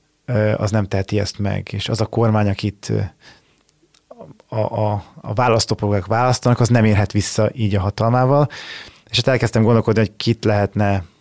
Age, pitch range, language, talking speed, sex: 30-49, 105-115 Hz, Hungarian, 155 wpm, male